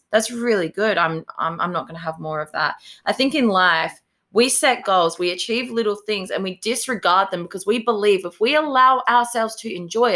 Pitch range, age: 175-230 Hz, 20-39